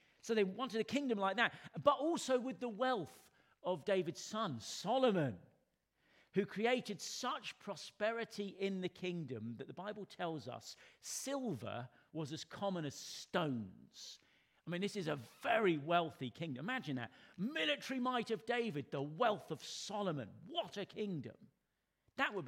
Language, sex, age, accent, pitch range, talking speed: English, male, 40-59, British, 135-215 Hz, 150 wpm